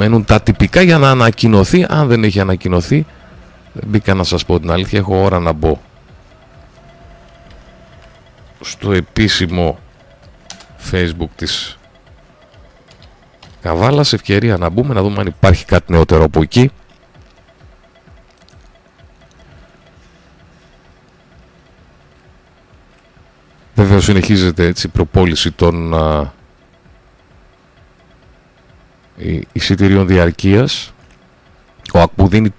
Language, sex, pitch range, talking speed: Greek, male, 90-115 Hz, 90 wpm